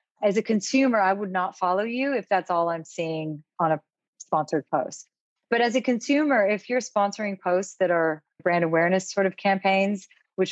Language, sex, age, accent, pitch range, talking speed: English, female, 30-49, American, 170-205 Hz, 190 wpm